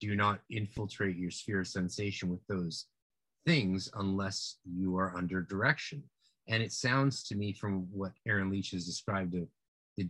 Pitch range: 90-110 Hz